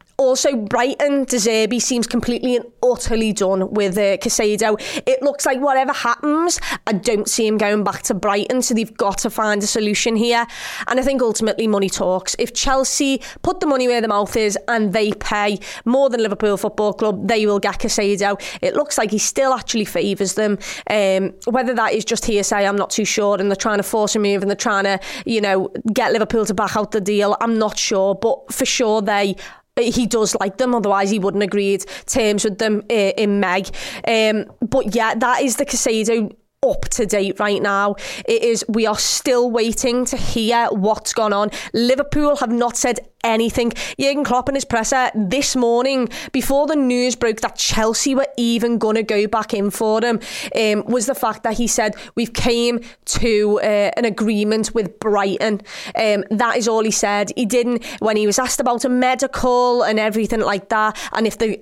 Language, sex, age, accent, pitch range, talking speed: English, female, 20-39, British, 210-245 Hz, 200 wpm